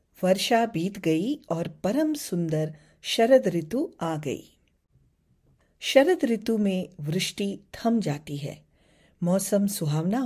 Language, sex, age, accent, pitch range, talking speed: English, female, 40-59, Indian, 160-220 Hz, 110 wpm